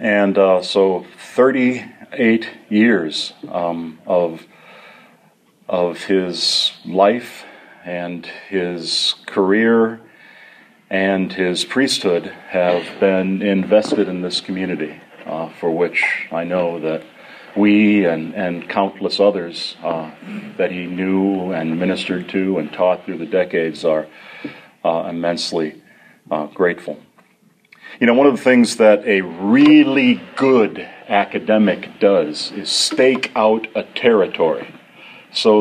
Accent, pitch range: American, 90-120 Hz